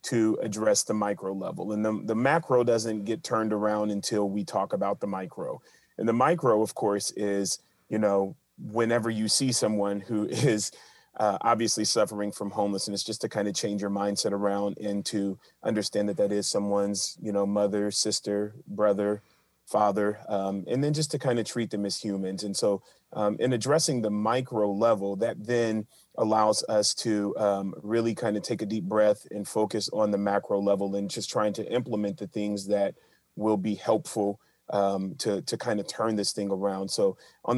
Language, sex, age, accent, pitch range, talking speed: English, male, 30-49, American, 100-110 Hz, 190 wpm